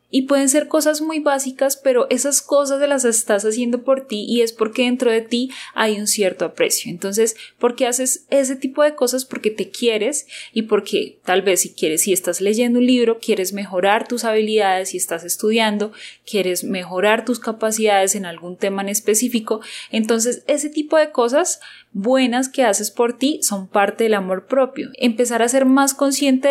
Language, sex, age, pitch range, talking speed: Spanish, female, 10-29, 195-250 Hz, 185 wpm